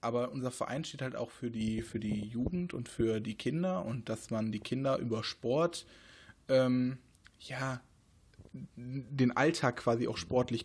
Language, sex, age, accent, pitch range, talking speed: German, male, 20-39, German, 115-135 Hz, 165 wpm